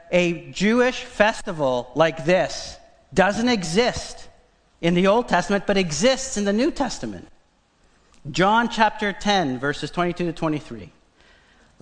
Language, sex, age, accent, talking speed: English, male, 40-59, American, 120 wpm